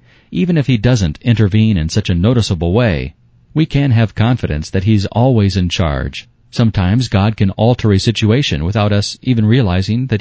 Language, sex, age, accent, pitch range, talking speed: English, male, 40-59, American, 90-120 Hz, 175 wpm